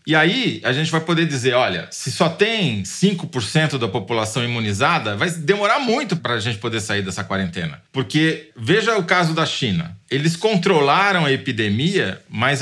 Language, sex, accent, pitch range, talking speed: Portuguese, male, Brazilian, 125-175 Hz, 170 wpm